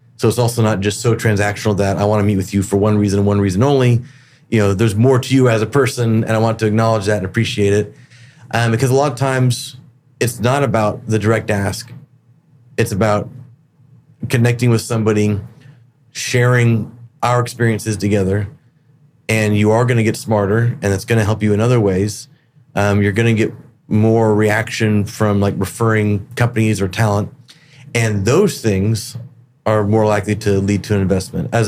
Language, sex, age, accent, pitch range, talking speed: English, male, 30-49, American, 105-125 Hz, 190 wpm